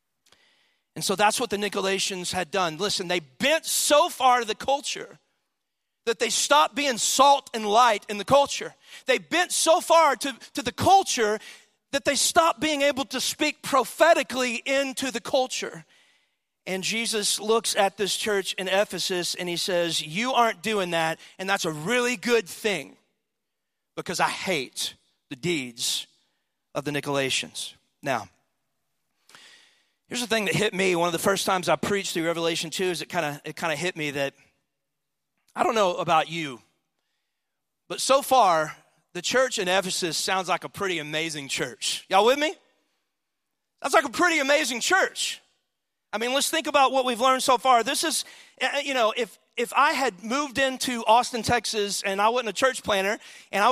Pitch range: 185-270 Hz